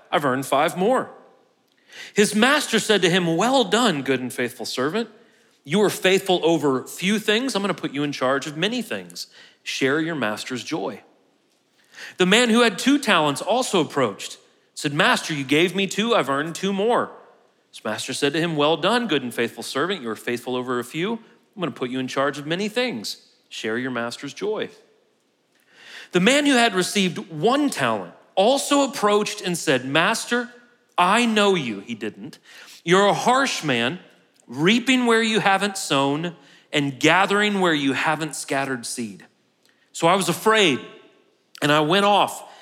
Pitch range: 145-225 Hz